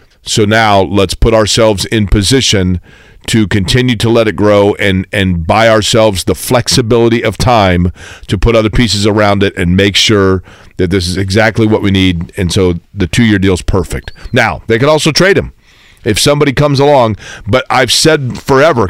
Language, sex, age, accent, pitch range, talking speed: English, male, 40-59, American, 100-125 Hz, 185 wpm